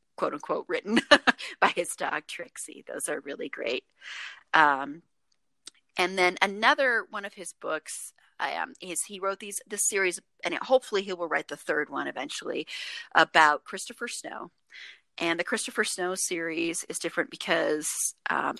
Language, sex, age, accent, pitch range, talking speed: English, female, 30-49, American, 170-235 Hz, 150 wpm